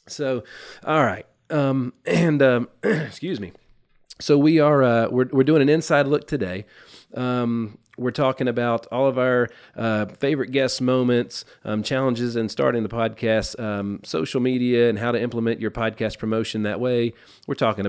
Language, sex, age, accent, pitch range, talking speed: English, male, 40-59, American, 105-130 Hz, 170 wpm